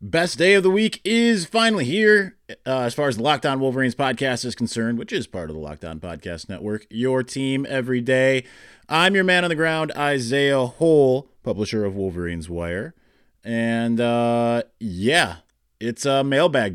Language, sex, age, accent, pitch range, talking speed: English, male, 30-49, American, 105-150 Hz, 170 wpm